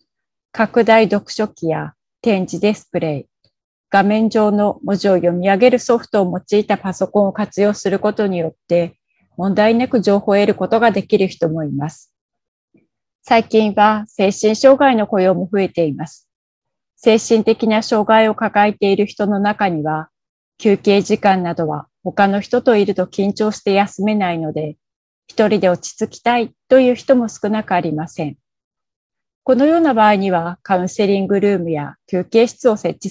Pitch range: 180-220 Hz